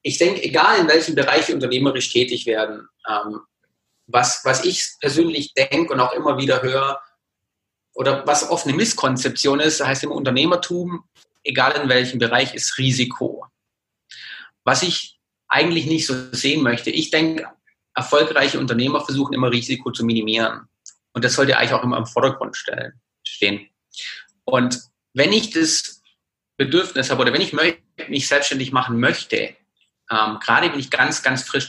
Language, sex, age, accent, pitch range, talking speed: German, male, 30-49, German, 120-145 Hz, 150 wpm